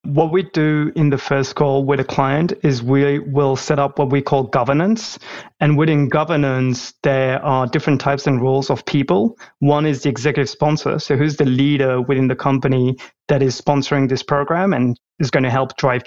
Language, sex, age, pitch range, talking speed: English, male, 30-49, 130-150 Hz, 200 wpm